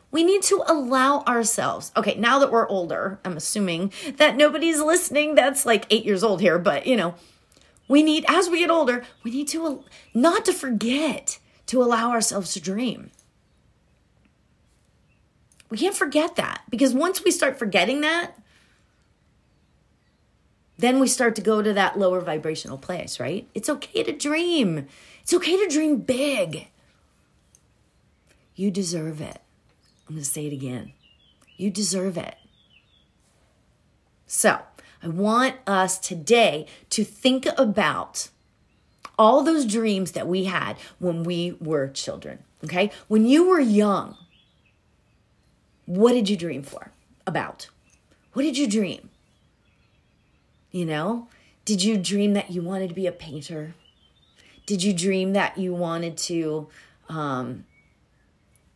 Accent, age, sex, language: American, 30-49, female, English